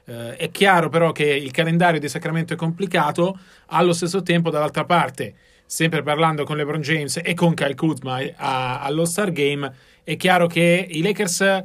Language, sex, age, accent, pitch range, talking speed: Italian, male, 40-59, native, 150-175 Hz, 160 wpm